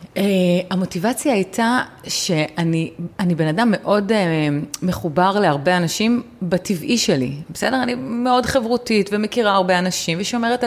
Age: 30-49